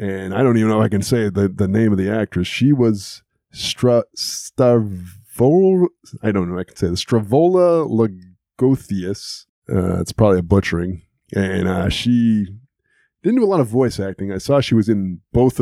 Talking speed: 190 wpm